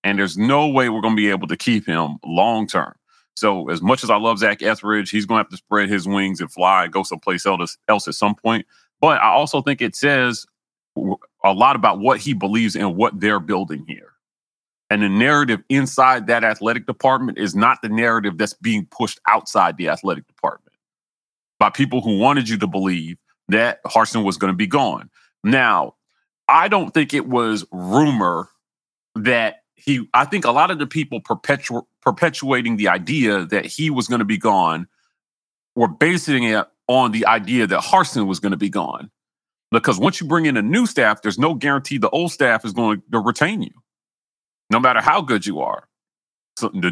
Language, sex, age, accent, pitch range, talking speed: English, male, 30-49, American, 105-160 Hz, 195 wpm